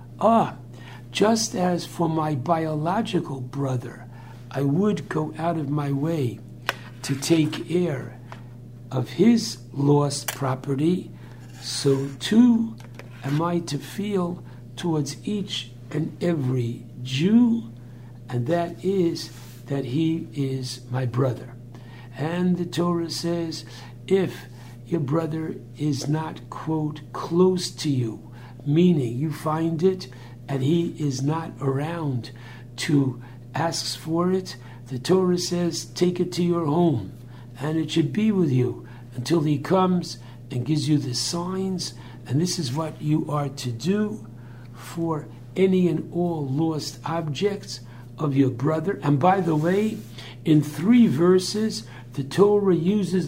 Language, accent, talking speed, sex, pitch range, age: English, American, 130 wpm, male, 125-170 Hz, 60-79